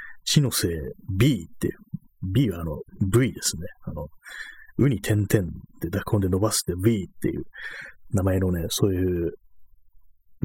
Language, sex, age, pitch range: Japanese, male, 30-49, 90-120 Hz